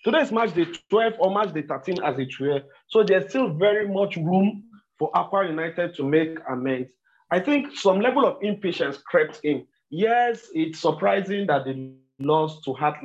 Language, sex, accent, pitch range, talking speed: English, male, Nigerian, 135-175 Hz, 180 wpm